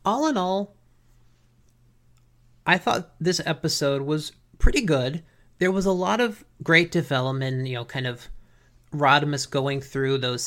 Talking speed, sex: 145 wpm, male